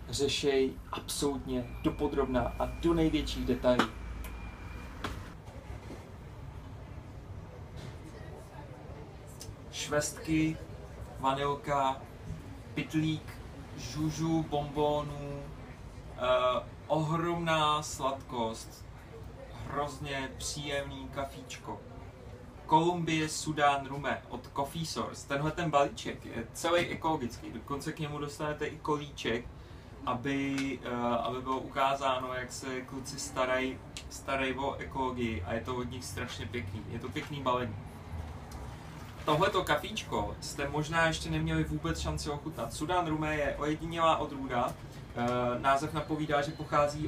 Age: 30-49